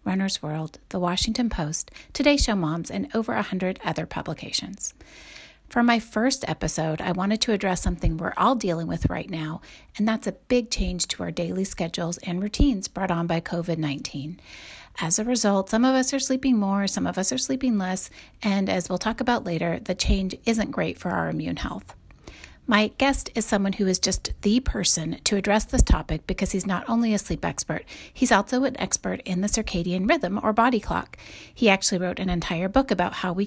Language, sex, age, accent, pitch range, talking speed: English, female, 40-59, American, 180-235 Hz, 205 wpm